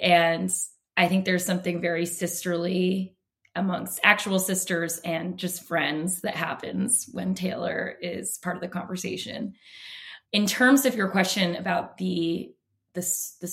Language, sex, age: English, female, 20-39